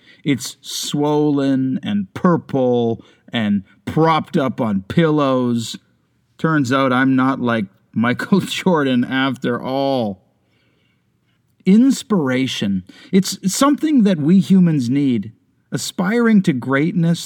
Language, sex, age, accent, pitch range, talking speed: English, male, 50-69, American, 135-185 Hz, 95 wpm